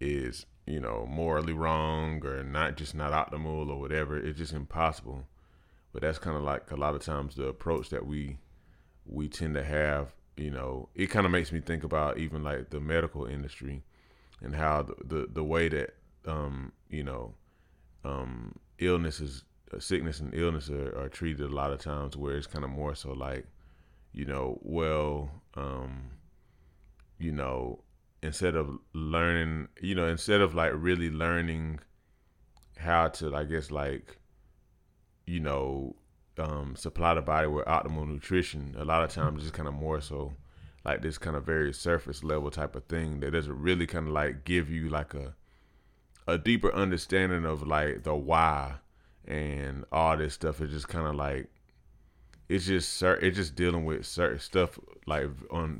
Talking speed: 170 wpm